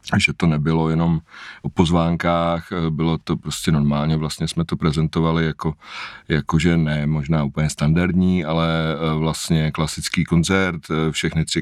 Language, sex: Czech, male